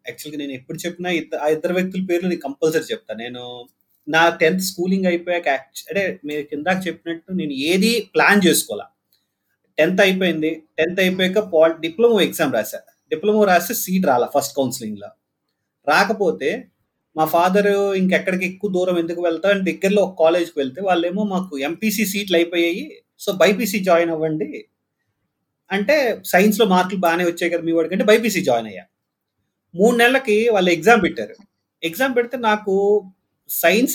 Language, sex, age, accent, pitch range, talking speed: Telugu, male, 30-49, native, 160-205 Hz, 145 wpm